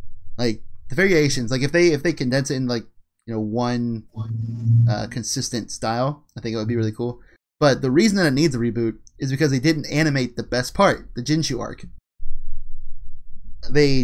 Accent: American